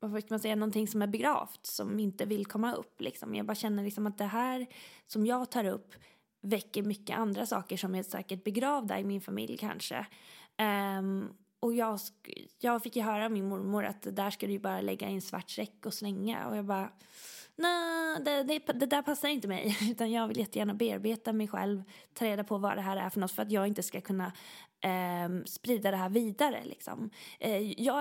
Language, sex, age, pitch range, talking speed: Swedish, female, 20-39, 190-225 Hz, 220 wpm